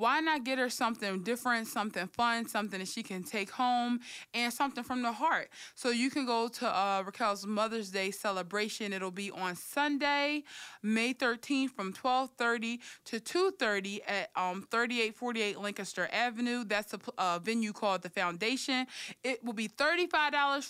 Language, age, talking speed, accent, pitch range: English, 20-39, 160 wpm, American, 195-250 Hz